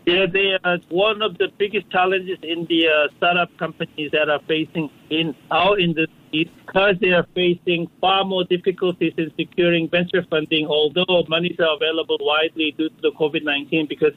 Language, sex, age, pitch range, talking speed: English, male, 50-69, 155-175 Hz, 170 wpm